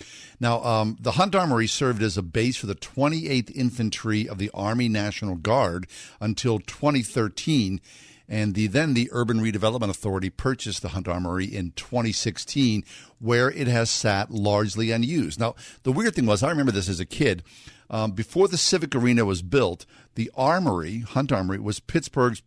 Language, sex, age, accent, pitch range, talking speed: English, male, 50-69, American, 100-125 Hz, 170 wpm